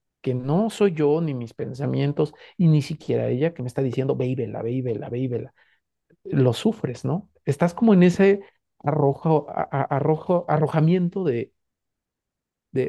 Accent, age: Mexican, 40-59